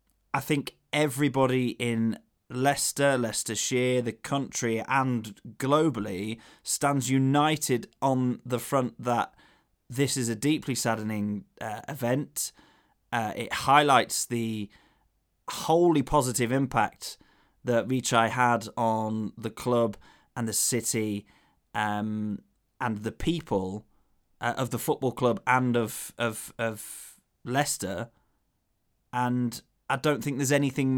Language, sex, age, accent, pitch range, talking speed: English, male, 20-39, British, 115-140 Hz, 115 wpm